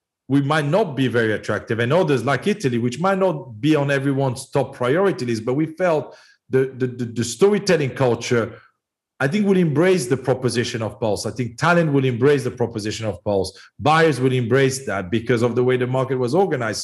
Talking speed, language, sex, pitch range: 205 wpm, English, male, 115-140 Hz